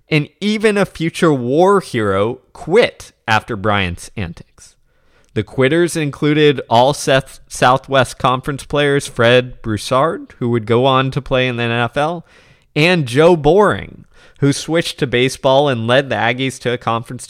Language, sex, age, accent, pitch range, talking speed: English, male, 20-39, American, 120-155 Hz, 145 wpm